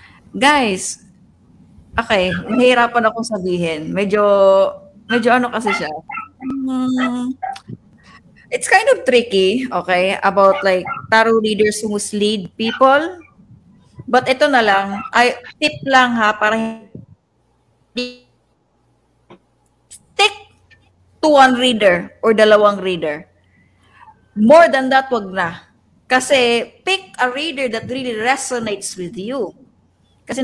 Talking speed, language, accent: 105 wpm, Filipino, native